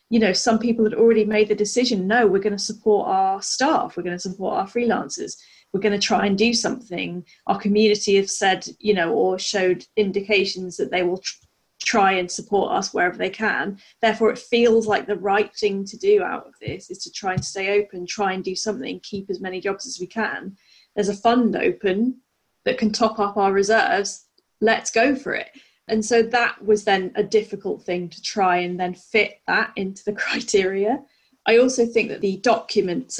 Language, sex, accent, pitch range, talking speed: English, female, British, 190-220 Hz, 205 wpm